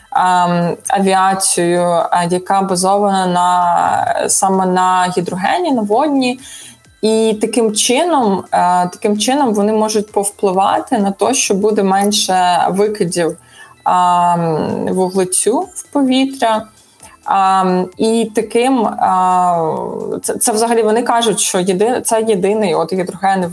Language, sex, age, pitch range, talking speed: Ukrainian, female, 20-39, 185-225 Hz, 105 wpm